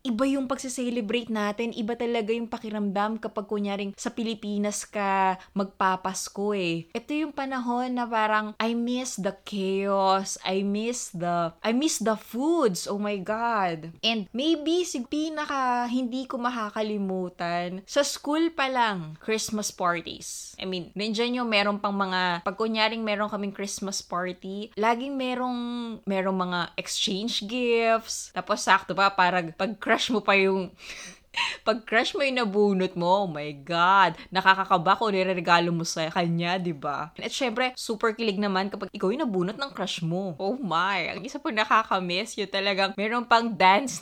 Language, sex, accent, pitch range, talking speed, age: Filipino, female, native, 190-240 Hz, 160 wpm, 20-39